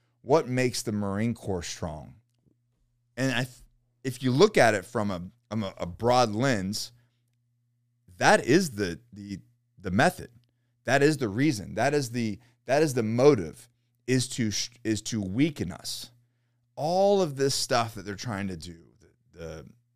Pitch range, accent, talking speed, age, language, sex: 95-125 Hz, American, 155 wpm, 30-49, English, male